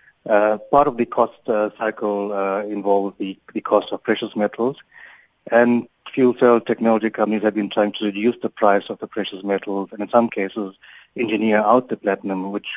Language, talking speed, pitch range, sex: English, 190 wpm, 100-115 Hz, male